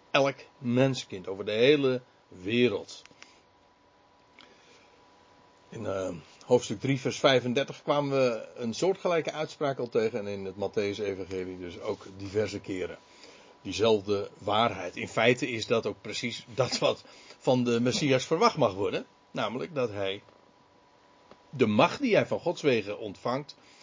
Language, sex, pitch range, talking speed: Dutch, male, 100-135 Hz, 135 wpm